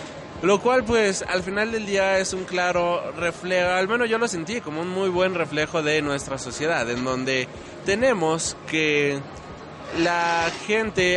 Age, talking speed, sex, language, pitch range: 20-39, 160 wpm, male, Spanish, 140-180 Hz